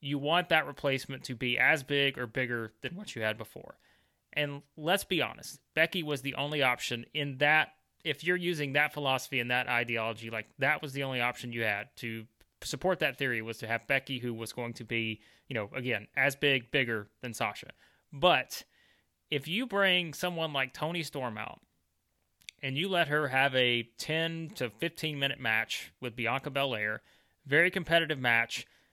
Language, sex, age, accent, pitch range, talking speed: English, male, 30-49, American, 120-155 Hz, 185 wpm